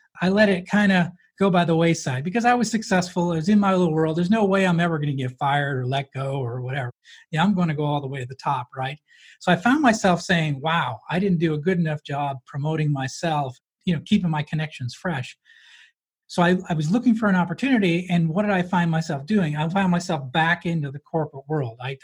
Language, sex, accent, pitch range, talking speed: English, male, American, 145-190 Hz, 245 wpm